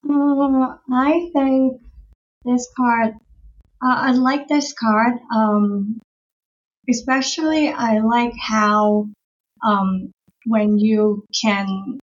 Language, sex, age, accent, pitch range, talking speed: English, female, 30-49, American, 205-245 Hz, 95 wpm